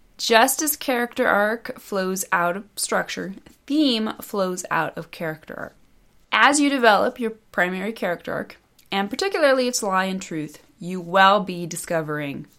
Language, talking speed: English, 150 wpm